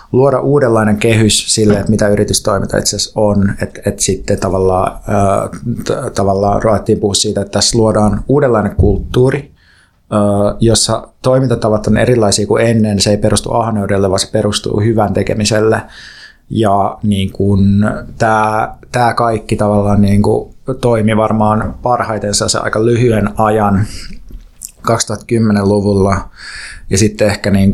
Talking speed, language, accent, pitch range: 125 wpm, Finnish, native, 100-110 Hz